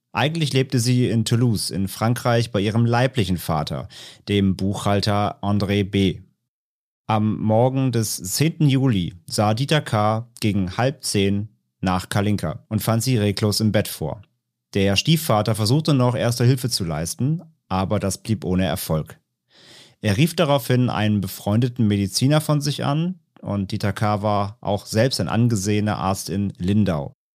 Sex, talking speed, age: male, 150 wpm, 40-59